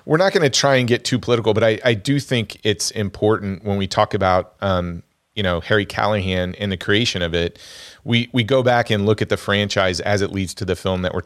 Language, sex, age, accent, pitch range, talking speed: English, male, 30-49, American, 95-110 Hz, 250 wpm